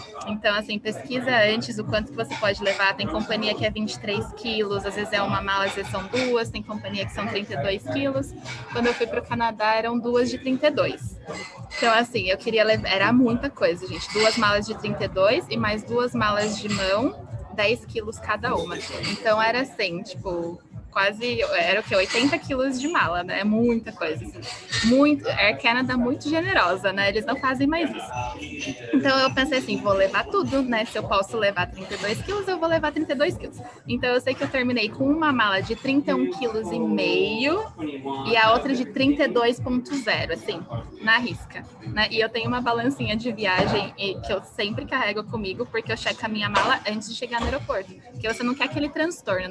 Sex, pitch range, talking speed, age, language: female, 210-260 Hz, 195 wpm, 20-39, Portuguese